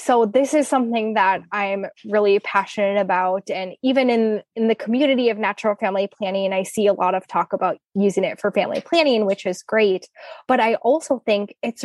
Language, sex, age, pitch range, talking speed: English, female, 10-29, 200-260 Hz, 200 wpm